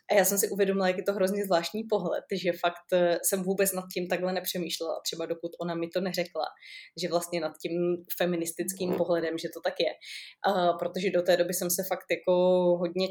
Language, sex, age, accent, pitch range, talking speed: Czech, female, 20-39, native, 170-190 Hz, 200 wpm